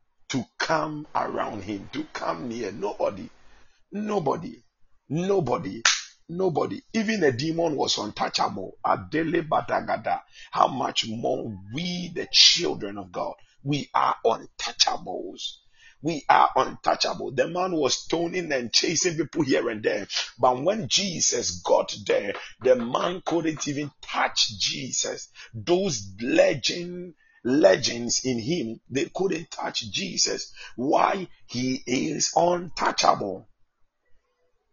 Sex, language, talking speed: male, English, 110 wpm